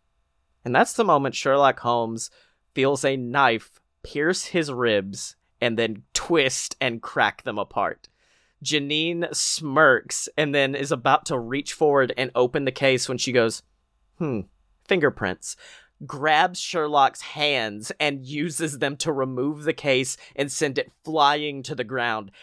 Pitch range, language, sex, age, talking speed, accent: 120-160 Hz, English, male, 30-49, 145 wpm, American